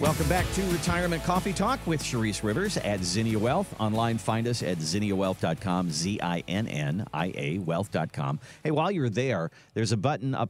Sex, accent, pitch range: male, American, 95-125 Hz